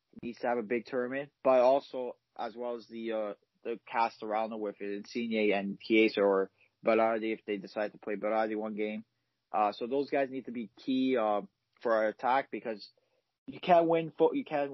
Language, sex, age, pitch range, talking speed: English, male, 30-49, 110-130 Hz, 210 wpm